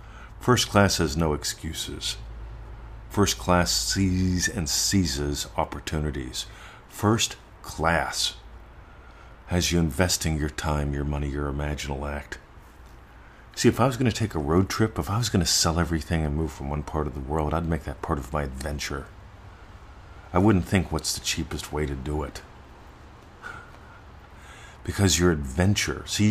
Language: English